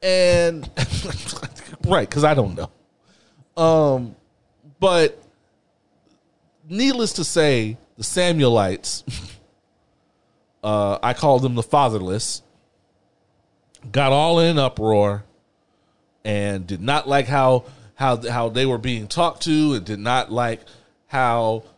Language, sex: English, male